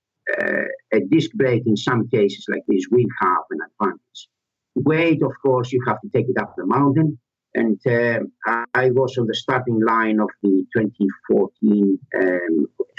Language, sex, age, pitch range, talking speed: English, male, 50-69, 110-145 Hz, 165 wpm